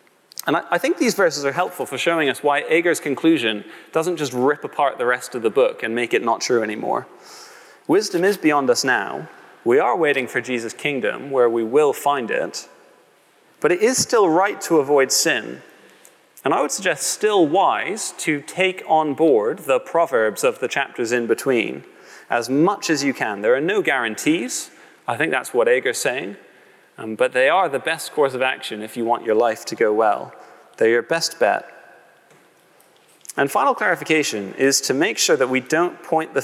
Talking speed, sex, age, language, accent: 195 wpm, male, 30-49, English, British